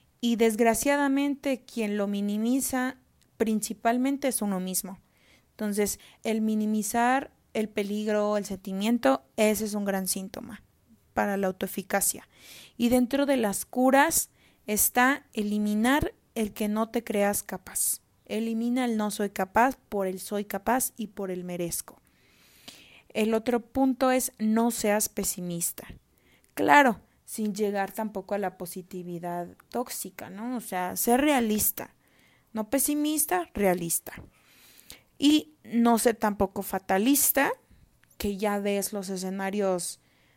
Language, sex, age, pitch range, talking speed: Spanish, female, 20-39, 195-240 Hz, 125 wpm